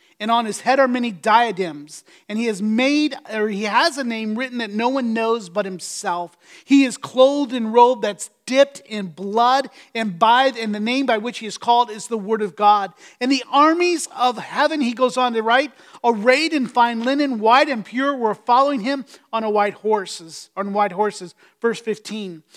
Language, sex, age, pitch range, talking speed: English, male, 30-49, 210-265 Hz, 195 wpm